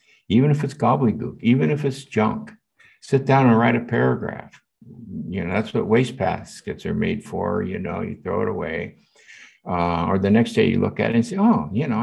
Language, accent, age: English, American, 60-79